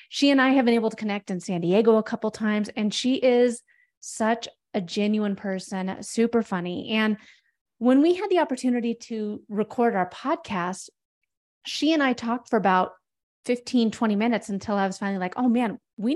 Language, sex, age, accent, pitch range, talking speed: English, female, 30-49, American, 200-260 Hz, 190 wpm